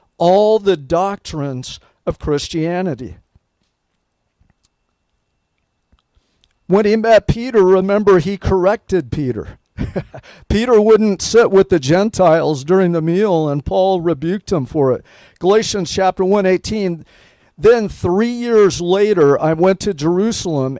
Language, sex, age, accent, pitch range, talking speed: English, male, 50-69, American, 150-200 Hz, 115 wpm